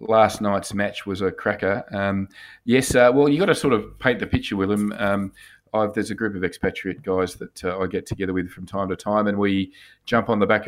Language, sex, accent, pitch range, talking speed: English, male, Australian, 100-110 Hz, 245 wpm